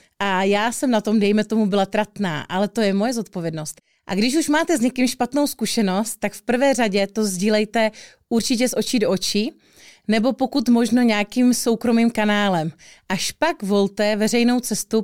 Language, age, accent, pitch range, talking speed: Czech, 30-49, native, 200-230 Hz, 175 wpm